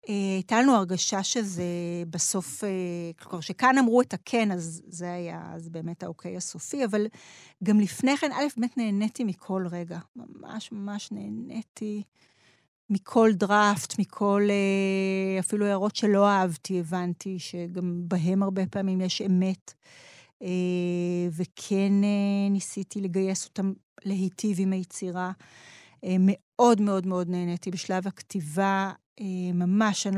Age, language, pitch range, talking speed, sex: 30-49, Hebrew, 175-210 Hz, 115 wpm, female